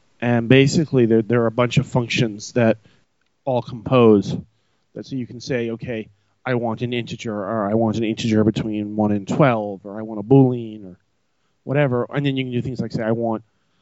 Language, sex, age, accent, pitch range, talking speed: English, male, 30-49, American, 100-125 Hz, 205 wpm